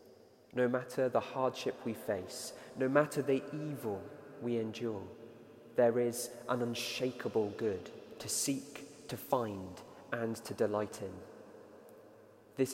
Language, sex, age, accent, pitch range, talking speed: English, male, 20-39, British, 115-140 Hz, 120 wpm